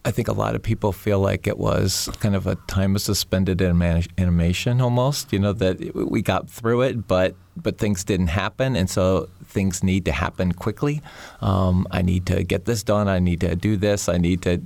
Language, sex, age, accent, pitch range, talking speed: English, male, 40-59, American, 85-105 Hz, 215 wpm